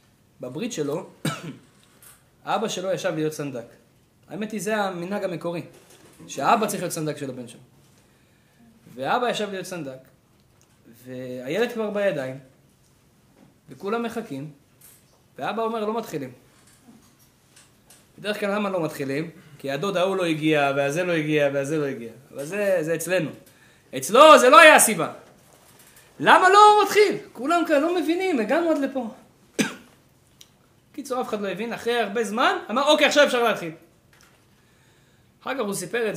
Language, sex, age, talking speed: Hebrew, male, 20-39, 140 wpm